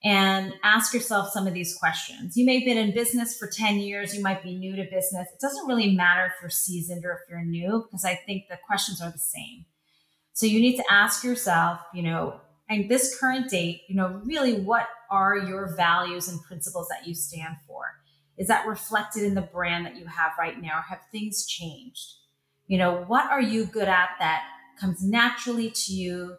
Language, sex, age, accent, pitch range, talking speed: English, female, 30-49, American, 175-220 Hz, 210 wpm